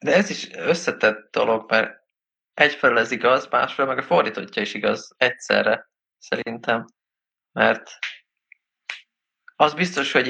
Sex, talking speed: male, 120 wpm